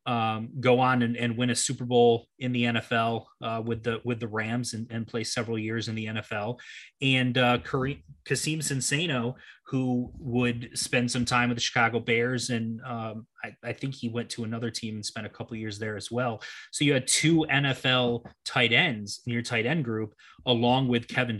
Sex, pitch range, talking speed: male, 115-130 Hz, 200 wpm